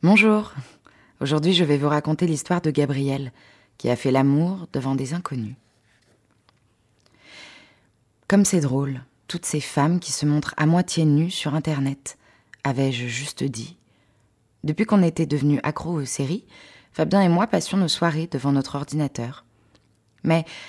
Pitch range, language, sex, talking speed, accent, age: 125-160 Hz, French, female, 145 wpm, French, 20-39